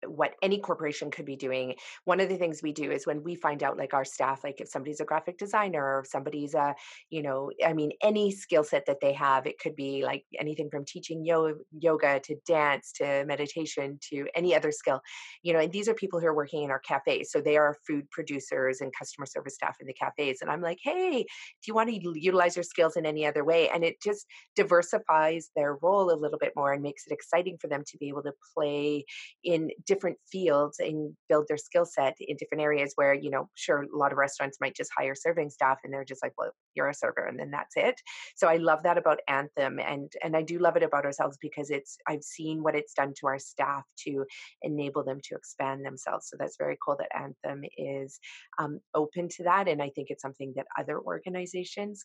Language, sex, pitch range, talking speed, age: English, female, 140-175 Hz, 235 wpm, 30-49